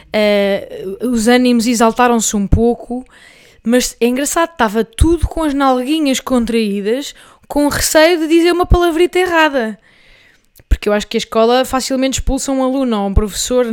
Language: Portuguese